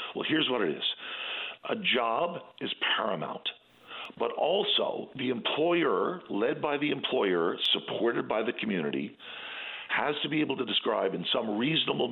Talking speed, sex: 150 wpm, male